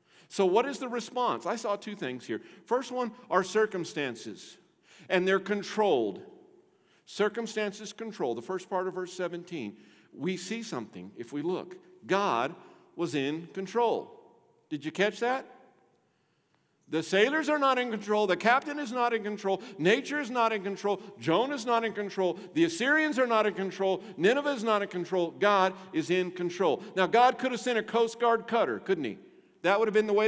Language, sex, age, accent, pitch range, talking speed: English, male, 50-69, American, 140-225 Hz, 185 wpm